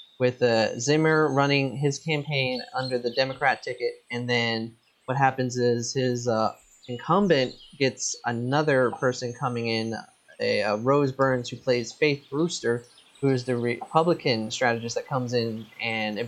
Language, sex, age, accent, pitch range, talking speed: English, male, 20-39, American, 120-145 Hz, 145 wpm